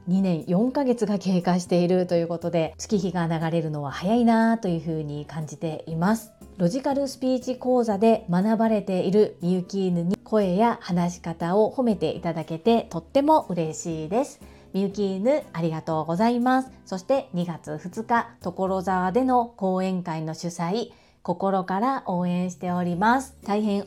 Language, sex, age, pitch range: Japanese, female, 40-59, 180-230 Hz